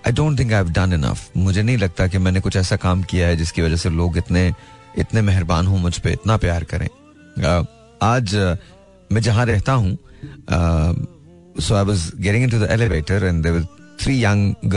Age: 30-49